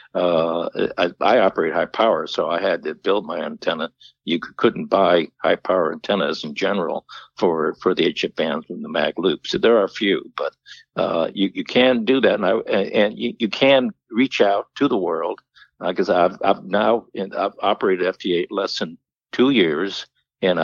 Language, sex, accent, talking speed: English, male, American, 200 wpm